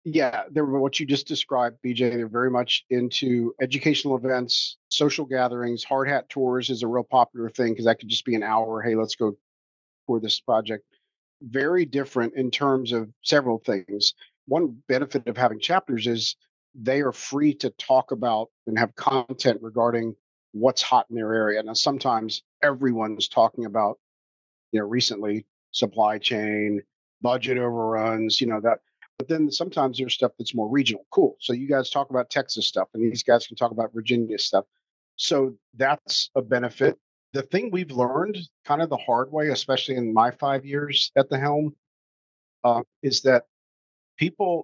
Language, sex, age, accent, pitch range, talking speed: English, male, 50-69, American, 115-135 Hz, 170 wpm